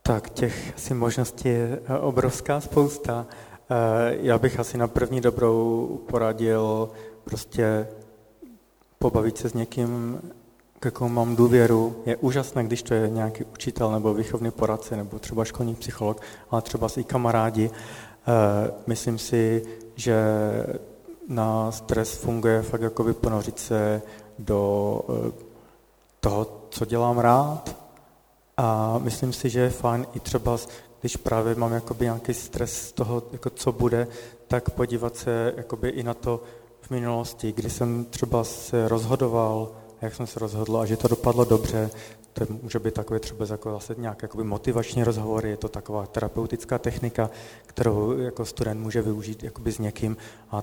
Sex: male